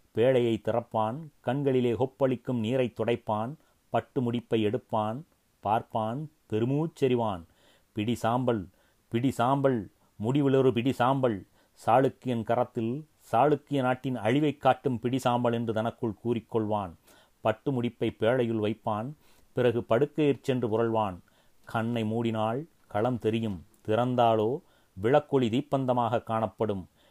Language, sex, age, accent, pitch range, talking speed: Tamil, male, 30-49, native, 110-130 Hz, 90 wpm